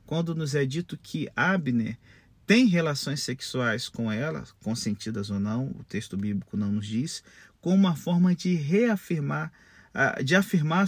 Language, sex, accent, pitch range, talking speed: Portuguese, male, Brazilian, 130-185 Hz, 150 wpm